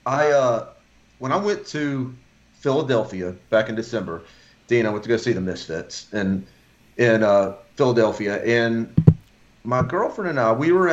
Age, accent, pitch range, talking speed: 40-59, American, 110-130 Hz, 165 wpm